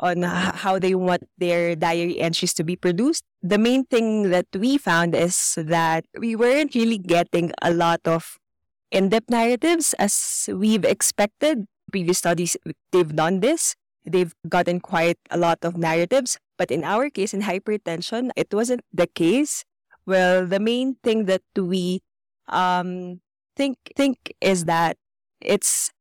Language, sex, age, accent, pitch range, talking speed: English, female, 20-39, Filipino, 175-230 Hz, 150 wpm